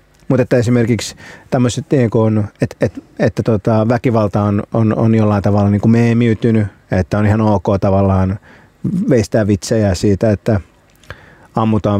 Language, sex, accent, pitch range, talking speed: Finnish, male, native, 105-120 Hz, 125 wpm